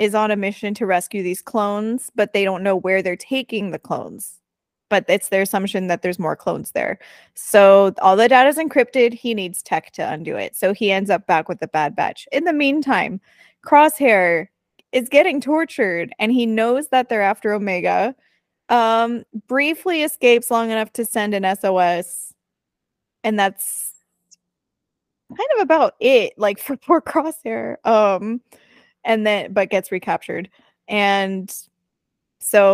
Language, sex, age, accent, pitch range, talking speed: English, female, 20-39, American, 190-245 Hz, 160 wpm